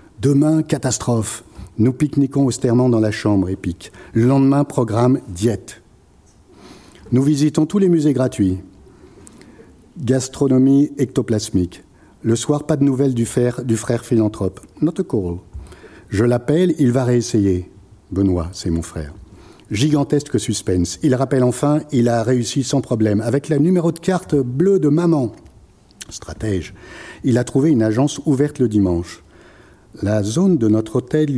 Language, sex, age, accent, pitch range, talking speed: French, male, 50-69, French, 100-145 Hz, 140 wpm